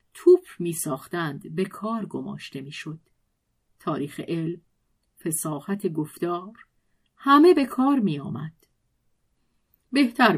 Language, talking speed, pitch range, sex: Persian, 95 wpm, 170-245 Hz, female